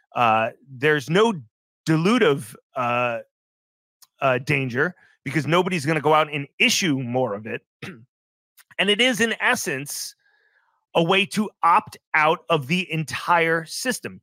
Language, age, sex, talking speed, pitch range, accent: English, 30-49, male, 135 wpm, 155-220 Hz, American